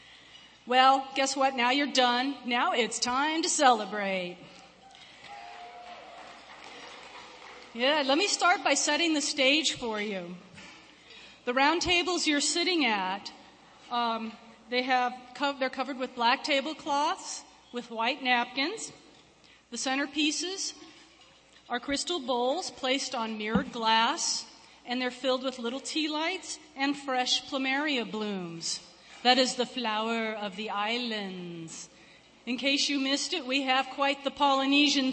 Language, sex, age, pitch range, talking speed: English, female, 40-59, 215-280 Hz, 125 wpm